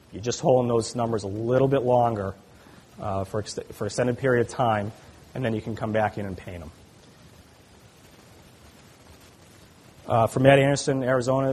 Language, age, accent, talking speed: English, 30-49, American, 170 wpm